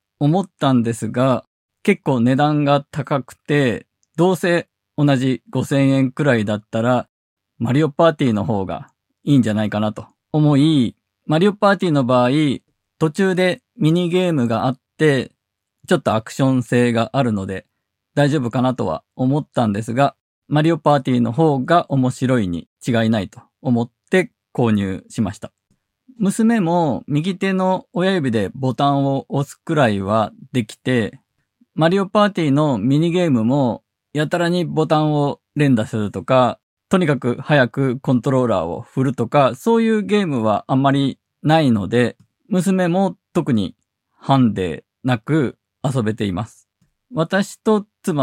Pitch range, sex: 115-155 Hz, male